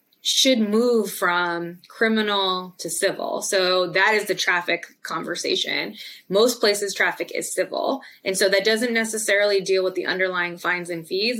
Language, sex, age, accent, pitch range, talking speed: English, female, 20-39, American, 175-220 Hz, 155 wpm